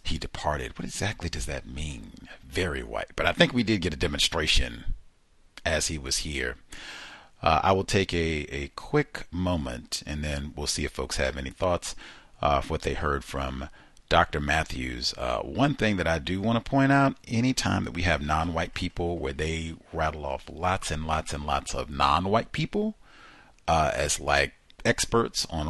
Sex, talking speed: male, 185 wpm